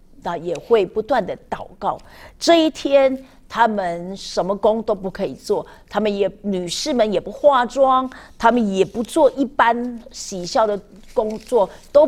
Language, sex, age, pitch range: Chinese, female, 50-69, 190-260 Hz